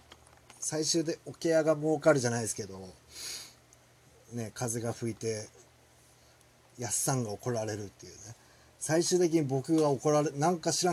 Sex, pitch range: male, 115-145 Hz